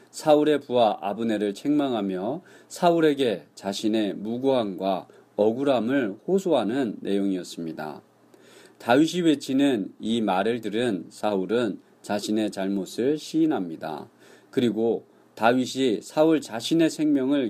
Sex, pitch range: male, 100-150 Hz